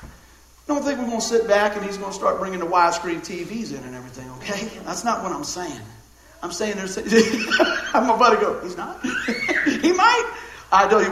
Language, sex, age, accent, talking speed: English, male, 50-69, American, 210 wpm